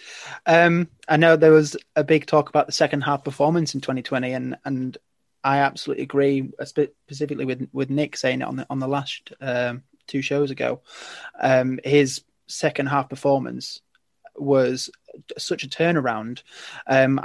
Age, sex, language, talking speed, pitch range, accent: 20-39, male, English, 160 wpm, 130-150 Hz, British